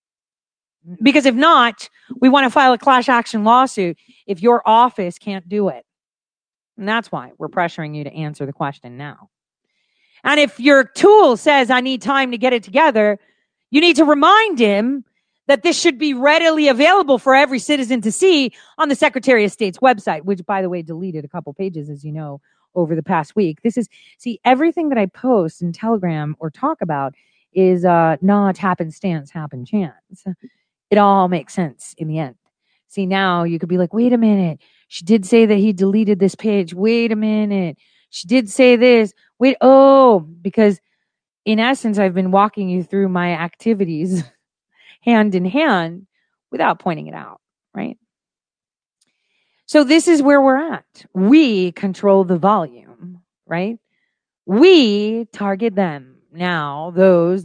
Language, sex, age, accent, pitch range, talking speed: English, female, 40-59, American, 175-250 Hz, 170 wpm